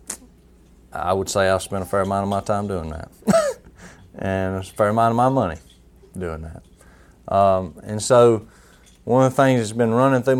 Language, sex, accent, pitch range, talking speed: English, male, American, 80-115 Hz, 190 wpm